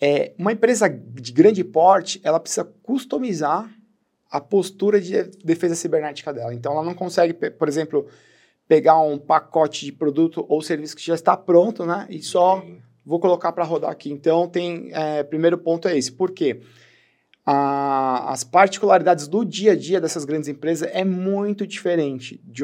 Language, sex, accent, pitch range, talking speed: Portuguese, male, Brazilian, 140-180 Hz, 160 wpm